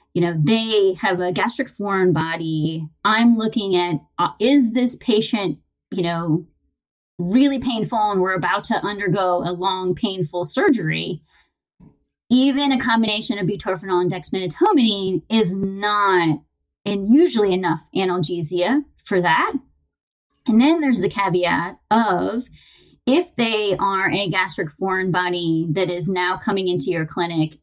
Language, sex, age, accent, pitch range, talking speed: English, female, 30-49, American, 175-220 Hz, 135 wpm